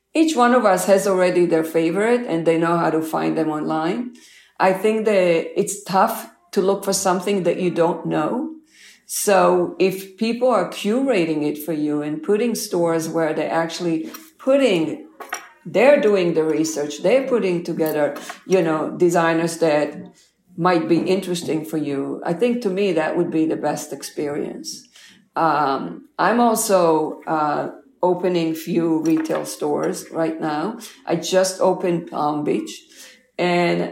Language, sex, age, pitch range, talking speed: English, female, 50-69, 165-200 Hz, 150 wpm